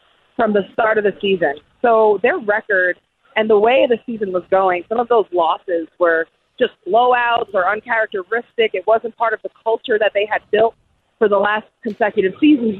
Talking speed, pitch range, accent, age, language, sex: 190 wpm, 195-235 Hz, American, 30-49, English, female